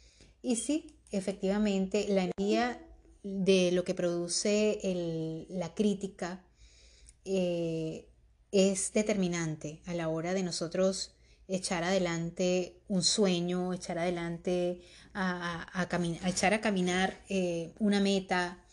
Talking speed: 120 wpm